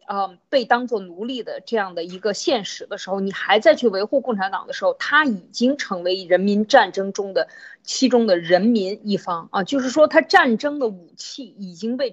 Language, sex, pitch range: Chinese, female, 195-285 Hz